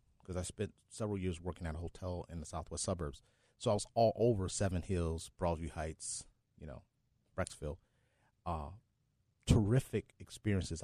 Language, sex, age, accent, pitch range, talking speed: English, male, 30-49, American, 95-125 Hz, 155 wpm